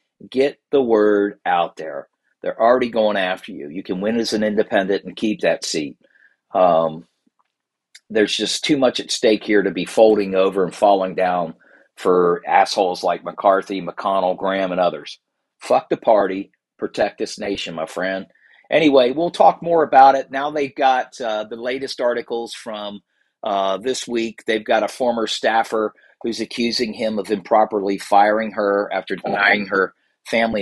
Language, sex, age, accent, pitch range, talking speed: English, male, 50-69, American, 95-130 Hz, 165 wpm